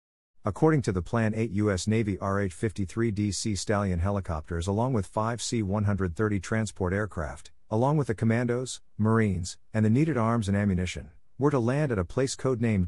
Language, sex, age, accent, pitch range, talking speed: English, male, 50-69, American, 90-115 Hz, 160 wpm